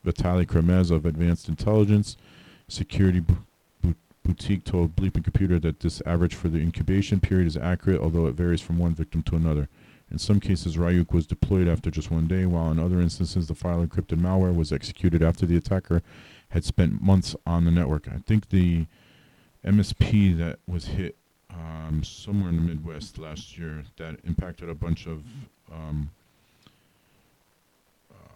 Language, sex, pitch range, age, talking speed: English, male, 80-95 Hz, 40-59, 160 wpm